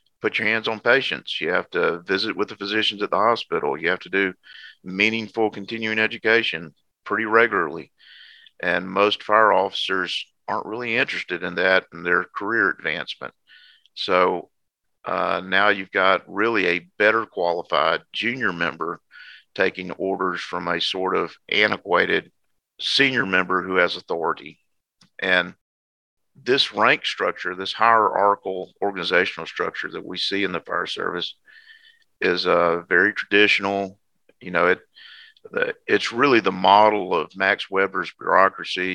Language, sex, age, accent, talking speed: English, male, 50-69, American, 140 wpm